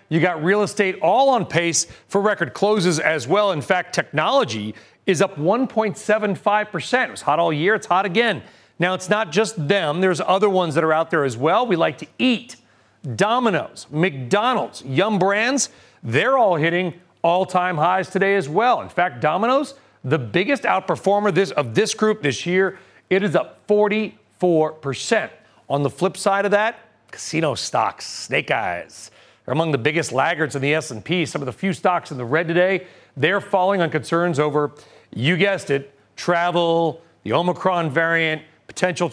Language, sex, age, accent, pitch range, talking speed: English, male, 40-59, American, 150-195 Hz, 170 wpm